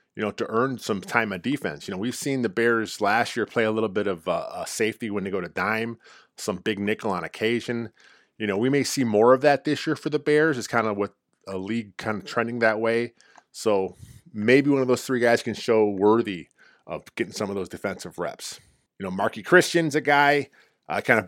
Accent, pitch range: American, 105-130 Hz